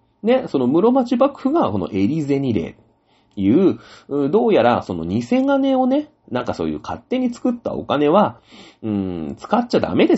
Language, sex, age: Japanese, male, 40-59